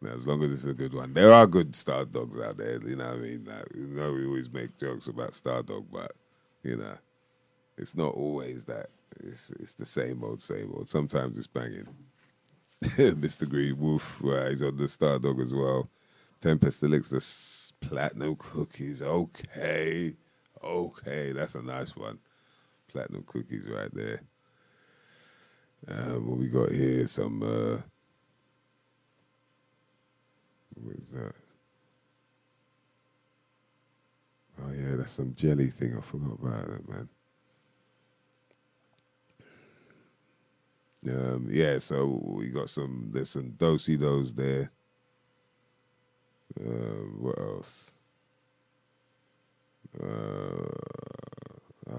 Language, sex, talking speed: English, male, 120 wpm